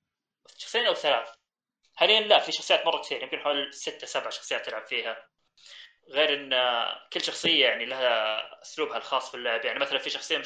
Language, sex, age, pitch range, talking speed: Arabic, male, 20-39, 130-215 Hz, 180 wpm